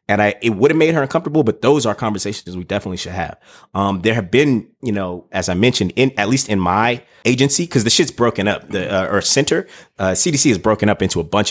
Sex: male